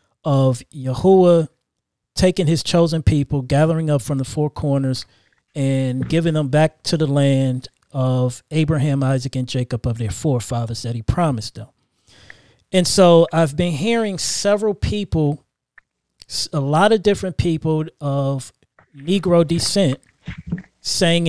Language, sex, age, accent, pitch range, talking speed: English, male, 40-59, American, 135-185 Hz, 130 wpm